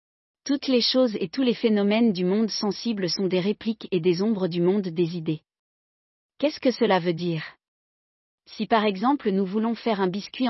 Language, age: French, 40-59